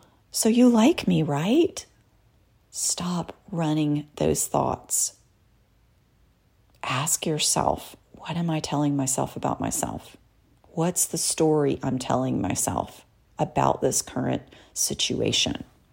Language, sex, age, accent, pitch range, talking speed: English, female, 40-59, American, 115-155 Hz, 105 wpm